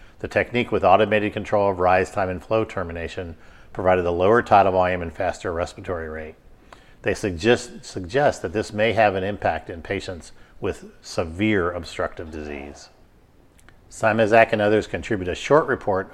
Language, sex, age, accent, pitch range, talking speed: English, male, 50-69, American, 90-110 Hz, 155 wpm